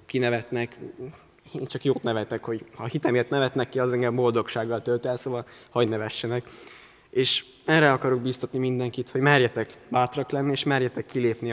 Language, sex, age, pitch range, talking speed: Hungarian, male, 20-39, 115-130 Hz, 160 wpm